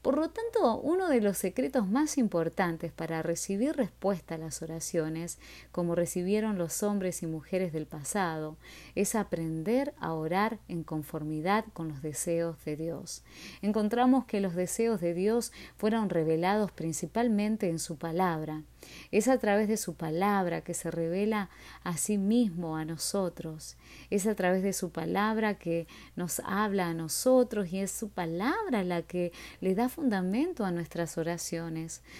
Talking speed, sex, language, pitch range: 155 wpm, female, Spanish, 165-220 Hz